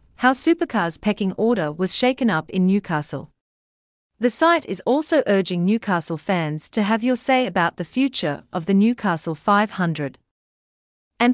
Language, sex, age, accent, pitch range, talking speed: English, female, 40-59, Australian, 170-240 Hz, 150 wpm